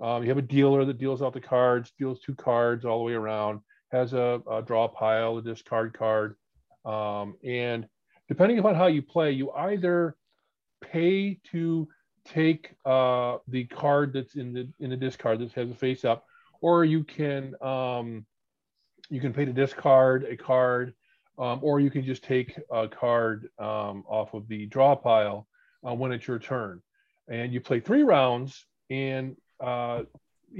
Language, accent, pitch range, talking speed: English, American, 115-140 Hz, 175 wpm